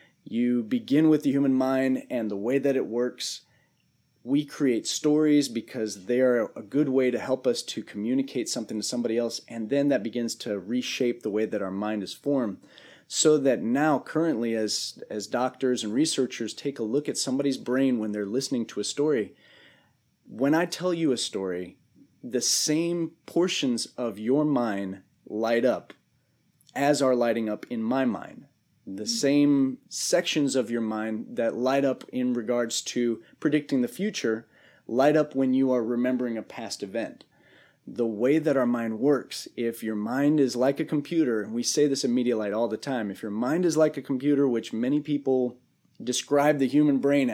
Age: 30-49